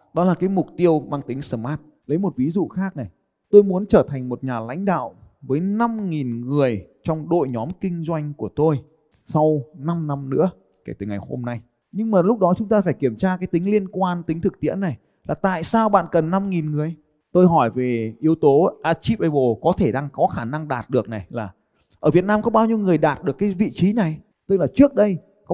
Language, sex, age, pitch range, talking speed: Vietnamese, male, 20-39, 145-205 Hz, 235 wpm